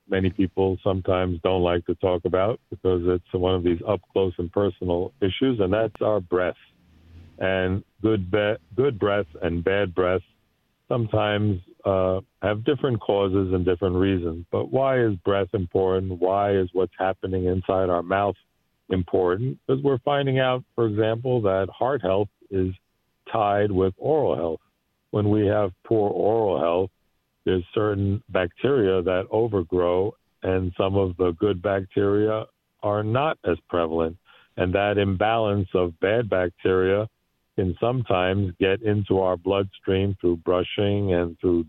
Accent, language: American, English